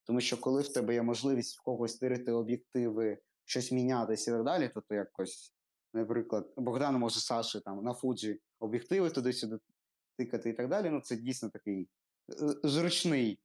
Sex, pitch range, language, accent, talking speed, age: male, 115-150 Hz, Ukrainian, native, 165 wpm, 20-39